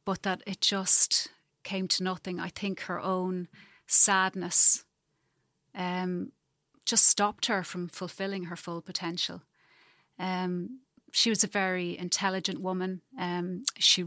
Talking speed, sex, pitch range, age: 130 wpm, female, 180-200 Hz, 30-49